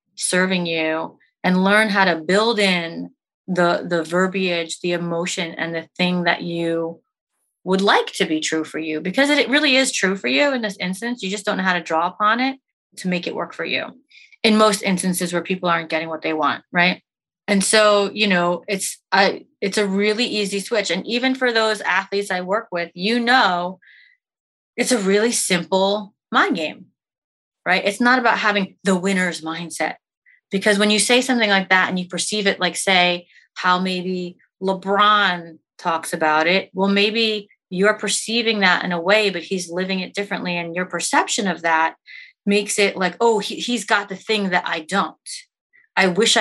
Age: 30-49